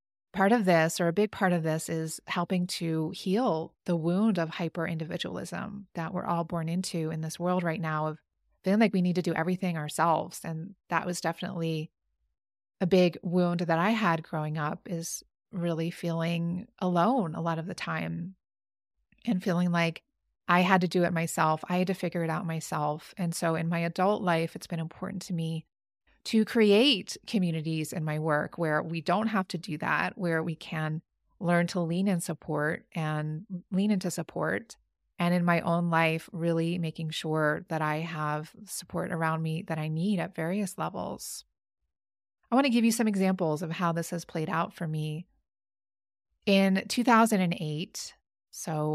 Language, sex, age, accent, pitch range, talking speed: English, female, 30-49, American, 160-185 Hz, 180 wpm